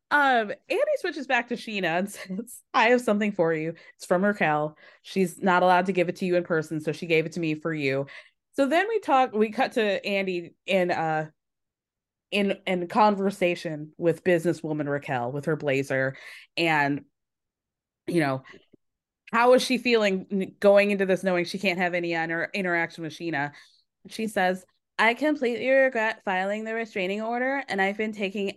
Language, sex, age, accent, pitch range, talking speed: English, female, 20-39, American, 175-220 Hz, 180 wpm